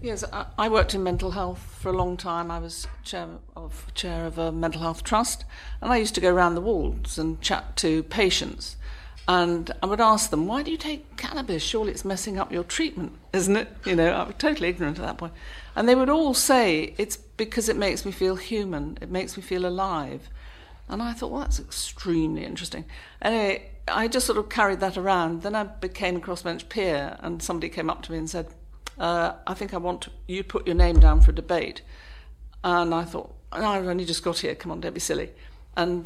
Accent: British